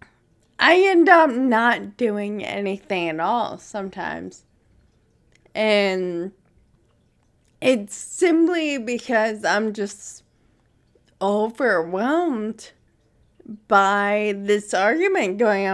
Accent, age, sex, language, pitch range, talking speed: American, 20-39, female, English, 205-265 Hz, 75 wpm